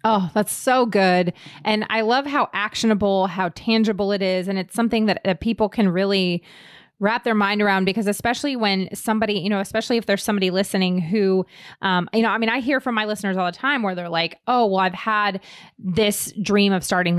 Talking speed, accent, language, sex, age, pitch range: 215 wpm, American, English, female, 20-39, 180-215 Hz